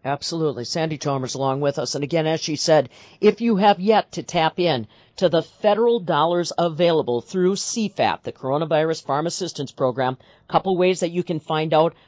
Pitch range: 145-185 Hz